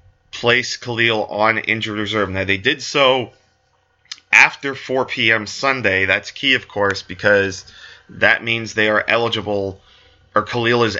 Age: 20-39